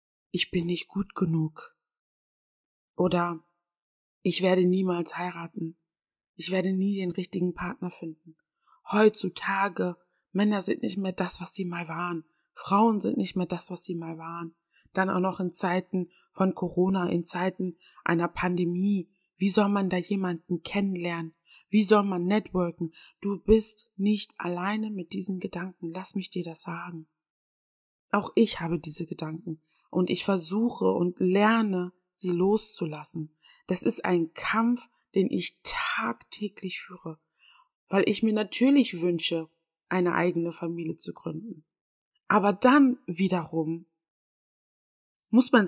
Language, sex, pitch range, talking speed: German, female, 165-195 Hz, 135 wpm